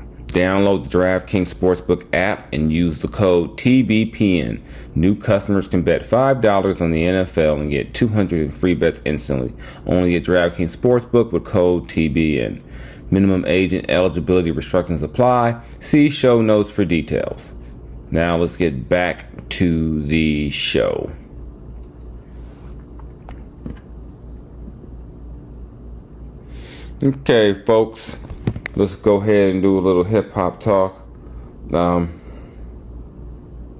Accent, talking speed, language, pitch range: American, 105 wpm, English, 75-100 Hz